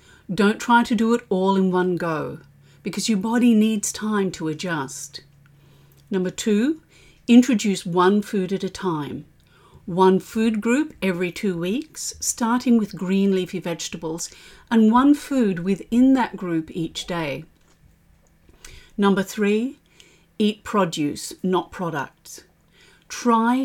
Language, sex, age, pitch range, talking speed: English, female, 40-59, 175-225 Hz, 125 wpm